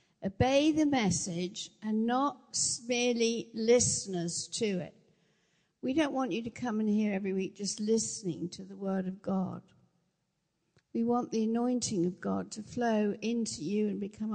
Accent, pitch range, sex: British, 190-255 Hz, female